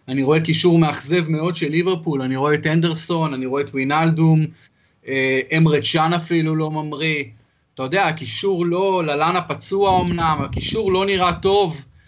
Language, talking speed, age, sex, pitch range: Hebrew, 155 wpm, 30-49, male, 150-195 Hz